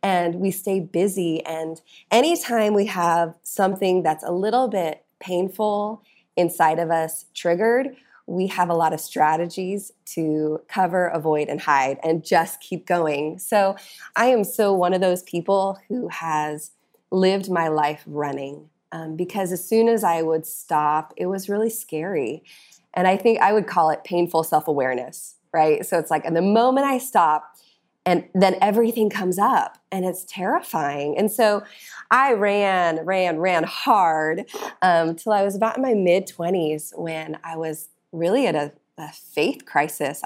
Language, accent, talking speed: English, American, 165 wpm